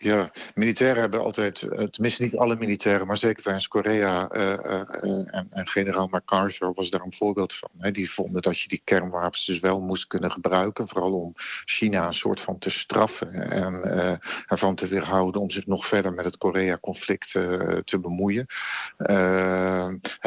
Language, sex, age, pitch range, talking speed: Dutch, male, 50-69, 95-105 Hz, 175 wpm